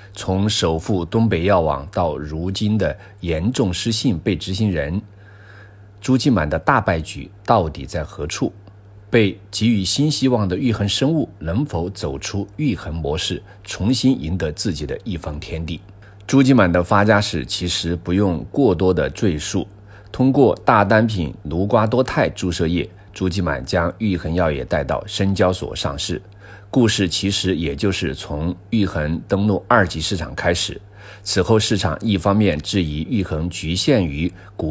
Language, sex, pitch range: Chinese, male, 85-105 Hz